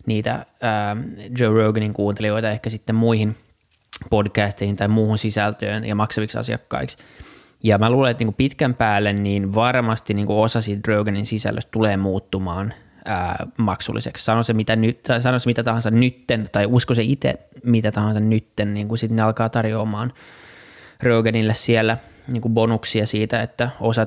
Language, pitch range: Finnish, 110-120 Hz